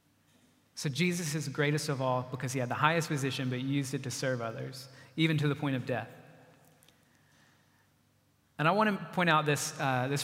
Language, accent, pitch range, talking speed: English, American, 135-160 Hz, 195 wpm